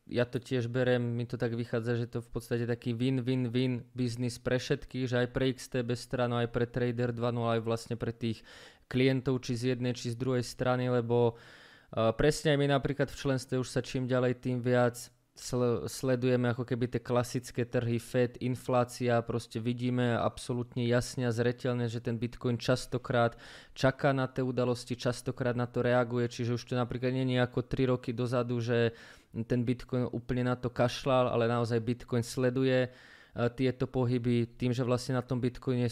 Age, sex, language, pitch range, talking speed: 20-39, male, Slovak, 120-130 Hz, 180 wpm